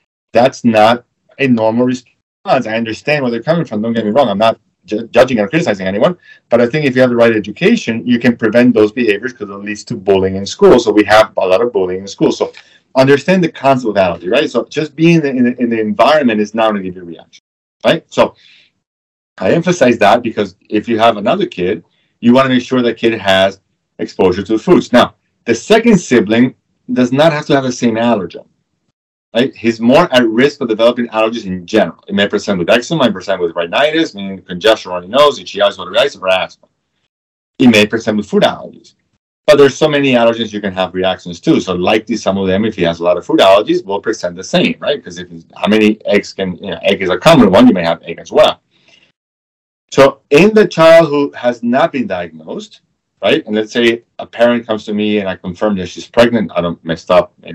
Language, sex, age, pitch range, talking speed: English, male, 40-59, 100-125 Hz, 230 wpm